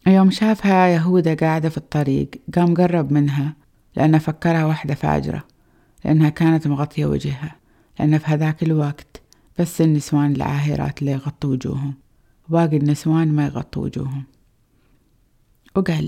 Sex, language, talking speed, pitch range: female, Arabic, 125 wpm, 140-165 Hz